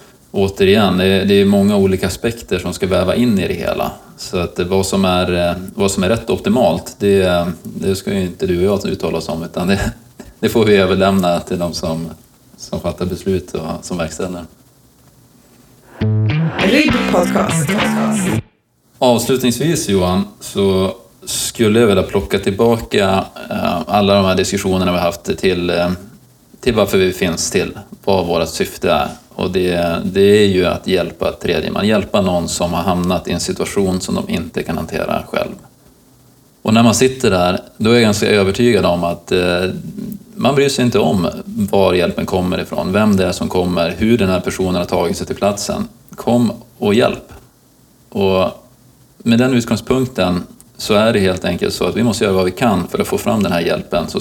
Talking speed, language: 185 wpm, Swedish